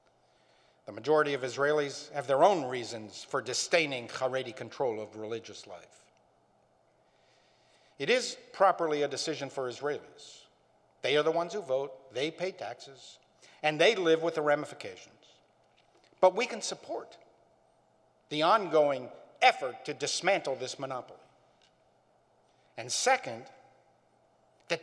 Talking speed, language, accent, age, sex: 125 wpm, English, American, 50-69, male